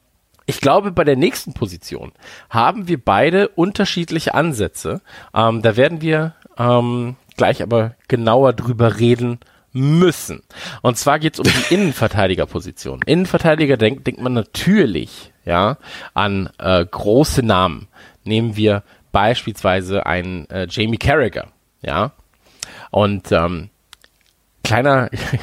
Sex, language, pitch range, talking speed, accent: male, German, 105-145 Hz, 120 wpm, German